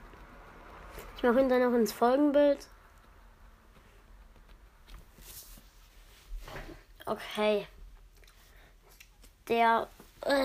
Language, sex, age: German, female, 20-39